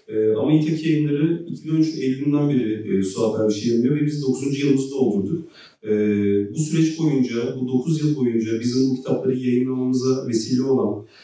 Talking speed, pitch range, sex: 155 wpm, 120-140 Hz, male